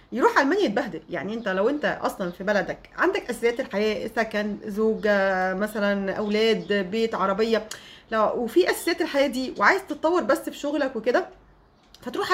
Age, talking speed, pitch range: 30-49, 145 wpm, 210-285 Hz